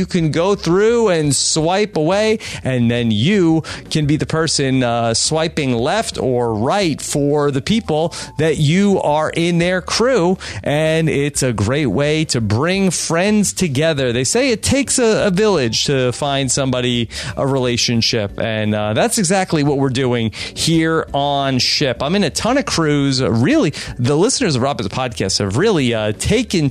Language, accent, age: English, American, 30-49